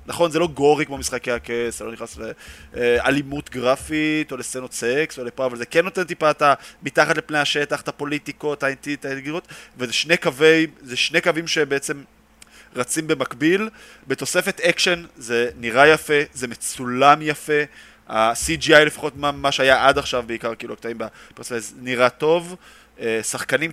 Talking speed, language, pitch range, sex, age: 150 wpm, Hebrew, 115-150 Hz, male, 20-39